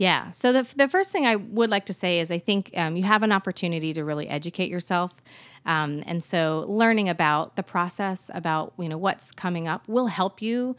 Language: English